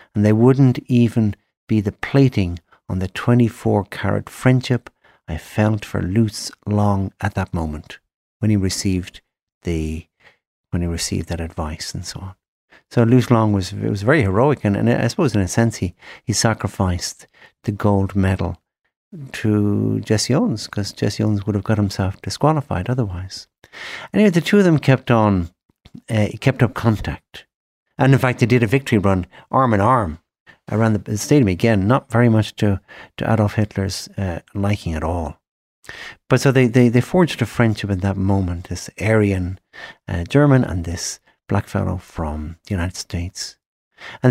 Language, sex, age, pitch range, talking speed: English, male, 60-79, 95-120 Hz, 170 wpm